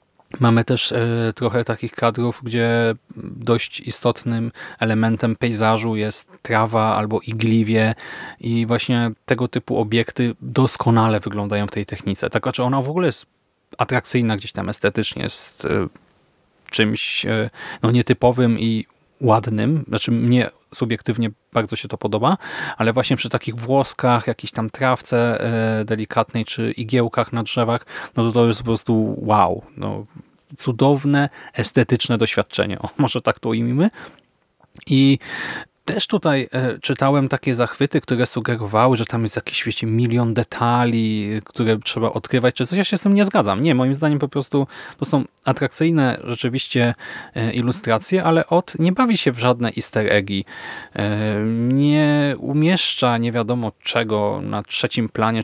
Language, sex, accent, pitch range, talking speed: English, male, Polish, 115-135 Hz, 145 wpm